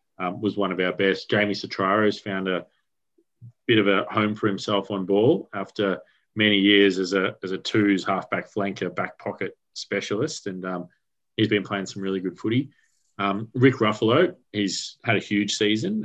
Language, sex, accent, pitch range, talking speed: English, male, Australian, 95-110 Hz, 180 wpm